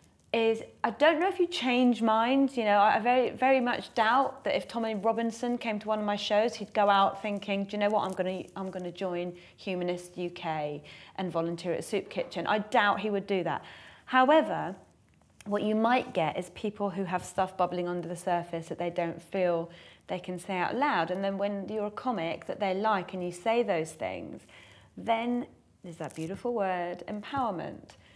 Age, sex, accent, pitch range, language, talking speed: 30-49, female, British, 175-215 Hz, English, 200 wpm